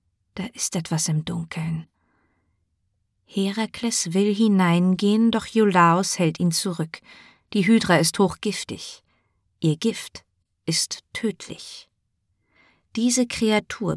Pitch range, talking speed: 145-200 Hz, 100 wpm